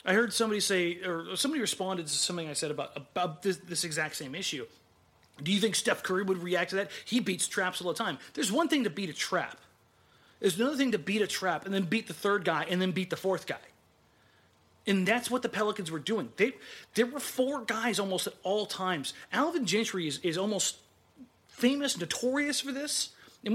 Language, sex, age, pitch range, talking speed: English, male, 30-49, 175-240 Hz, 215 wpm